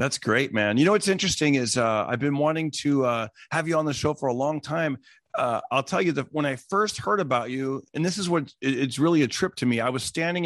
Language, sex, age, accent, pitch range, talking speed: English, male, 40-59, American, 135-180 Hz, 270 wpm